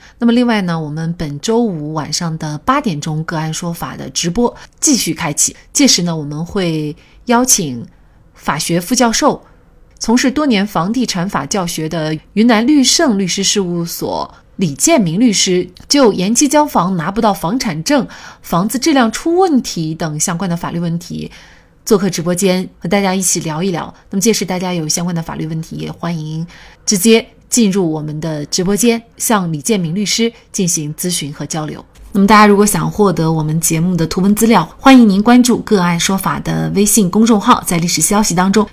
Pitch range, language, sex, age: 165-225 Hz, Chinese, female, 30-49